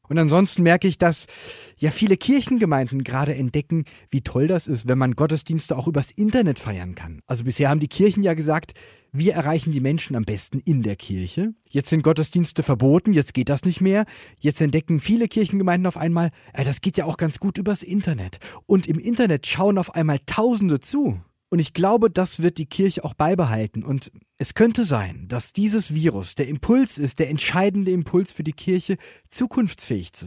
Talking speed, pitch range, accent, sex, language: 190 wpm, 135-185 Hz, German, male, German